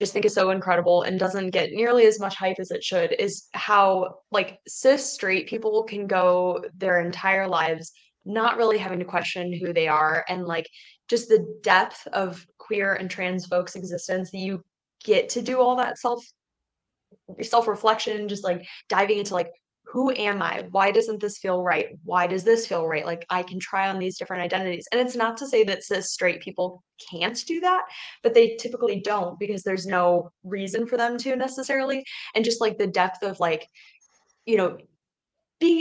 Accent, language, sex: American, English, female